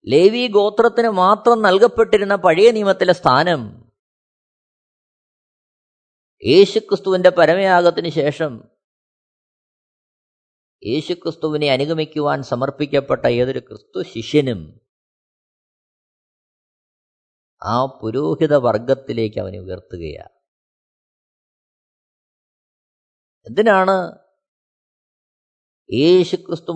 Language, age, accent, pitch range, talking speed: Malayalam, 20-39, native, 145-210 Hz, 50 wpm